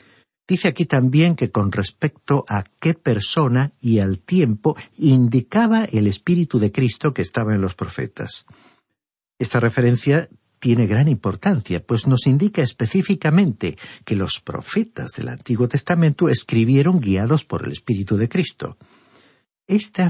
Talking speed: 135 wpm